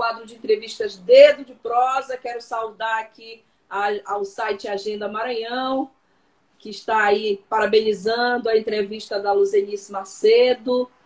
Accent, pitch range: Brazilian, 195-240 Hz